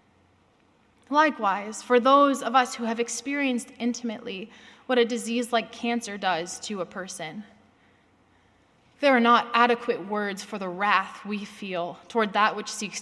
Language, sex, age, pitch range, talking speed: English, female, 20-39, 205-245 Hz, 145 wpm